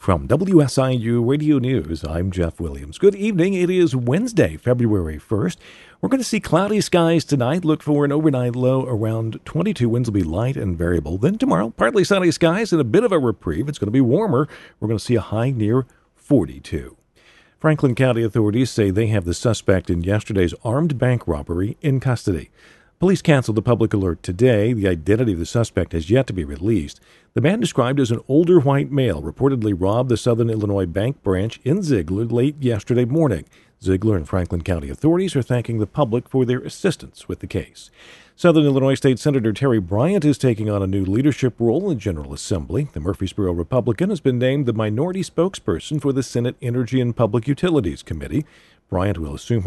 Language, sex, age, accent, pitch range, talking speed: English, male, 50-69, American, 100-140 Hz, 195 wpm